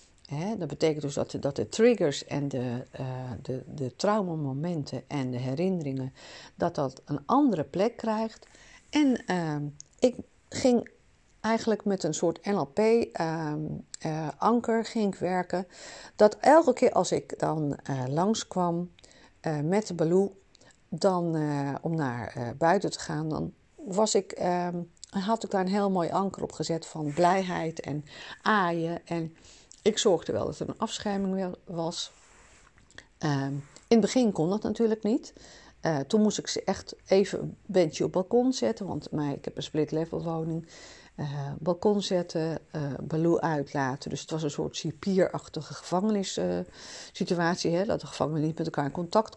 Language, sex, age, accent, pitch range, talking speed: Dutch, female, 50-69, Dutch, 150-205 Hz, 150 wpm